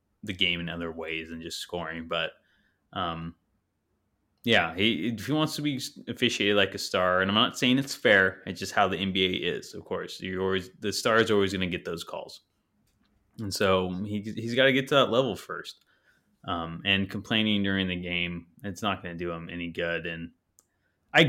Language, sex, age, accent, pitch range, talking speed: English, male, 20-39, American, 90-120 Hz, 195 wpm